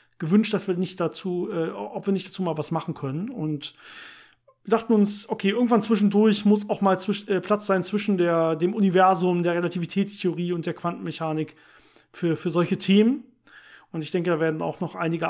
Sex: male